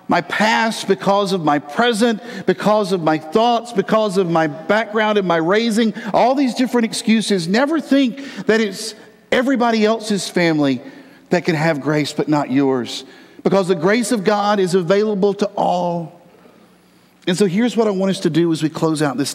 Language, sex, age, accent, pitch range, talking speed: English, male, 50-69, American, 155-210 Hz, 180 wpm